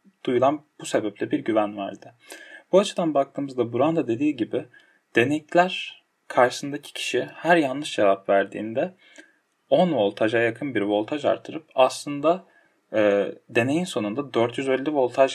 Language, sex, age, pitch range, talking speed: Turkish, male, 10-29, 110-150 Hz, 120 wpm